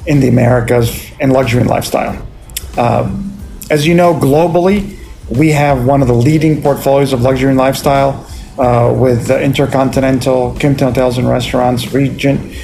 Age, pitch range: 40-59, 130-155 Hz